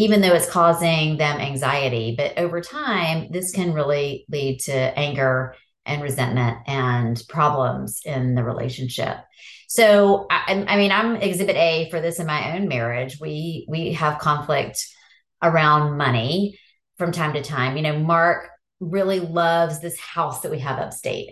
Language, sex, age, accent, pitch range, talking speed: English, female, 30-49, American, 145-180 Hz, 160 wpm